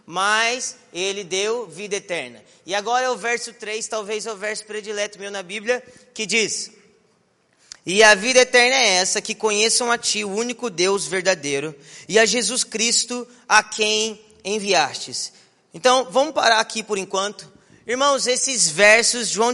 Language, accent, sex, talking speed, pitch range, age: Portuguese, Brazilian, male, 160 wpm, 200-245 Hz, 20-39